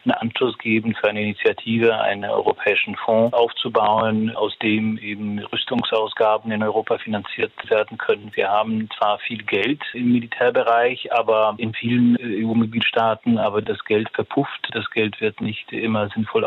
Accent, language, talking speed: German, German, 145 wpm